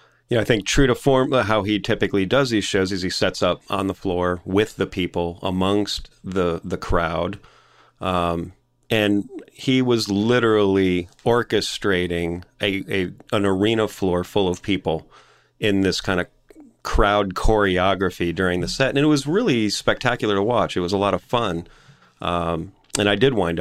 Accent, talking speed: American, 175 wpm